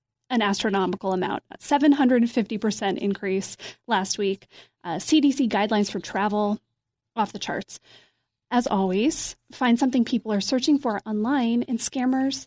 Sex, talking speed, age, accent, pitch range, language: female, 130 wpm, 30-49, American, 195-250 Hz, English